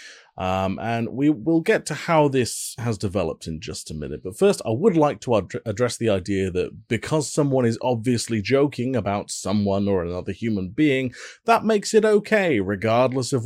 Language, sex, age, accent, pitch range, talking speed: English, male, 30-49, British, 100-150 Hz, 185 wpm